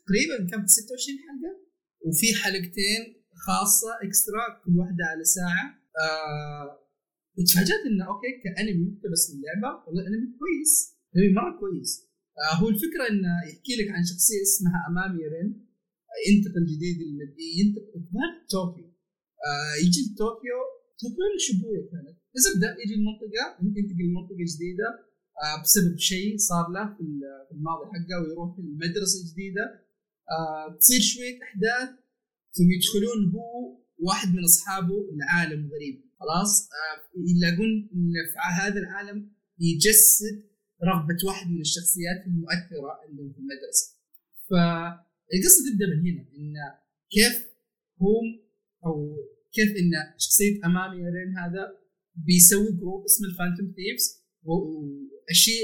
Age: 30-49